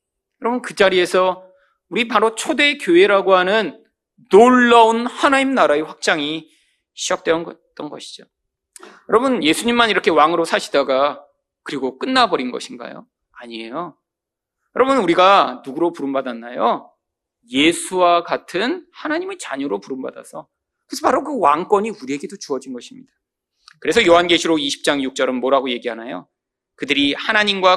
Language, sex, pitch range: Korean, male, 150-250 Hz